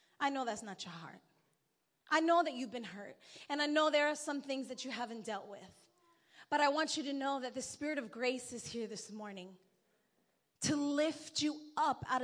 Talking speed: 215 wpm